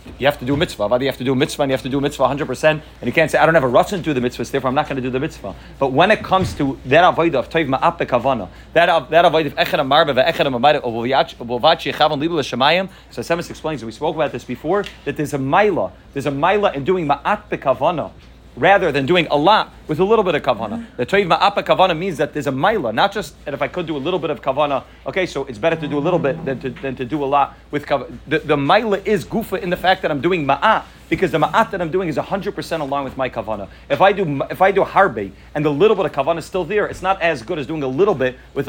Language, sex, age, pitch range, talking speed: English, male, 30-49, 135-180 Hz, 280 wpm